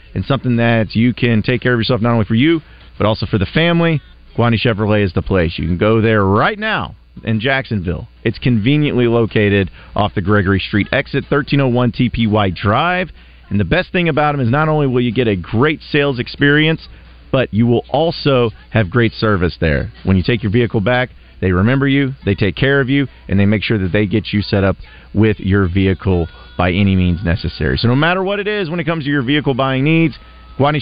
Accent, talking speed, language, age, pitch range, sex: American, 220 wpm, English, 40-59, 95-130 Hz, male